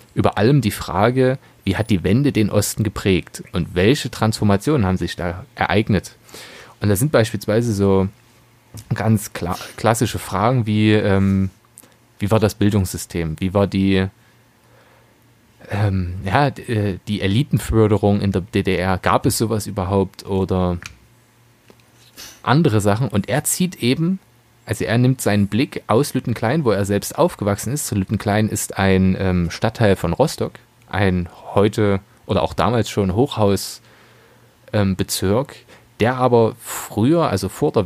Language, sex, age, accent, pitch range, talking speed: German, male, 30-49, German, 95-120 Hz, 140 wpm